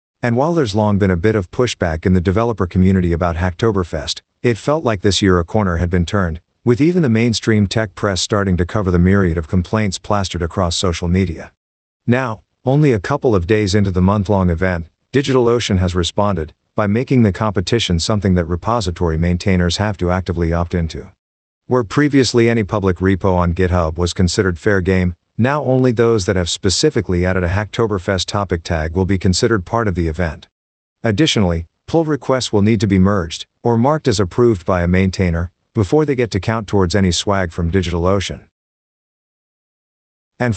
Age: 50-69